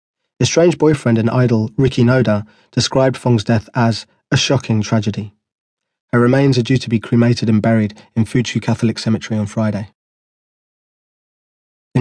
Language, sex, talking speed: English, male, 150 wpm